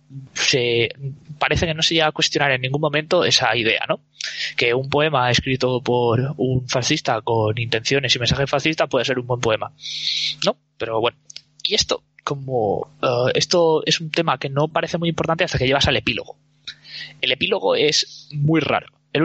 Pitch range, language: 125-160 Hz, Spanish